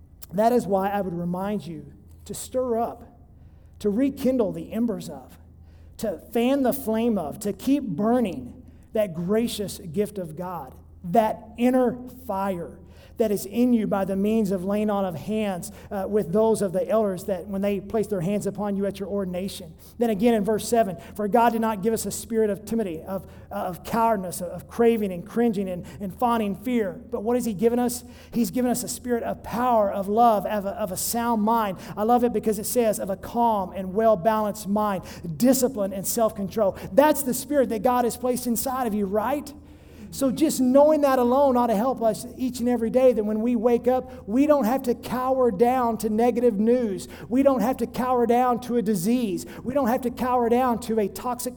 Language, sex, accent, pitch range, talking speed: English, male, American, 205-245 Hz, 205 wpm